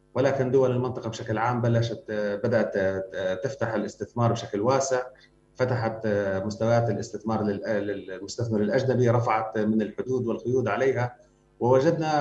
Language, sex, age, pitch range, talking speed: Arabic, male, 30-49, 110-135 Hz, 110 wpm